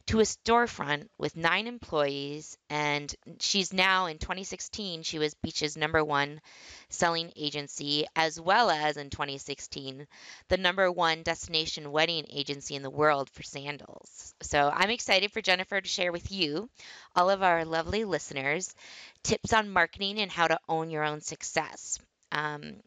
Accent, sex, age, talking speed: American, female, 20-39, 155 wpm